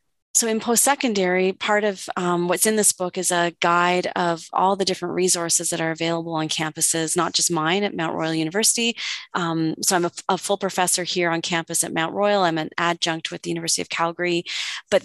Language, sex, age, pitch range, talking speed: English, female, 30-49, 165-190 Hz, 205 wpm